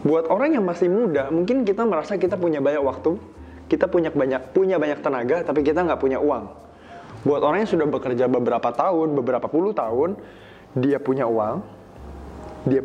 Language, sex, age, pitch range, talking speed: Indonesian, male, 20-39, 120-160 Hz, 175 wpm